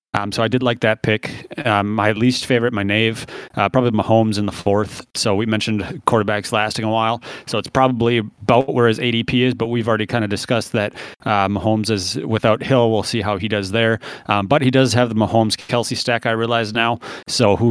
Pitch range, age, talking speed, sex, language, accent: 105-125 Hz, 30-49, 220 wpm, male, English, American